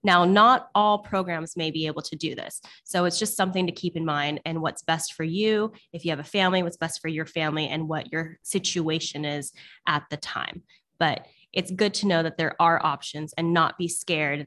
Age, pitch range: 20-39, 155-185 Hz